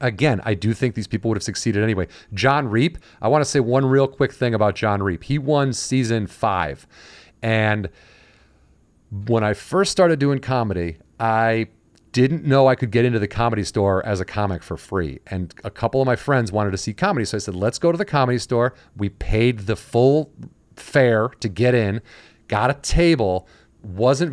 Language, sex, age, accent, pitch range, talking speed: English, male, 40-59, American, 95-125 Hz, 195 wpm